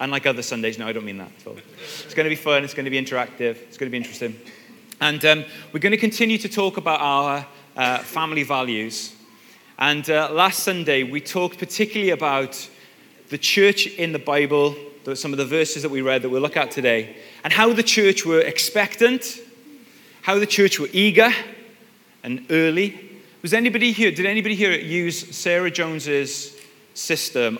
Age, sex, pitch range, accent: 30-49, male, 130-185 Hz, British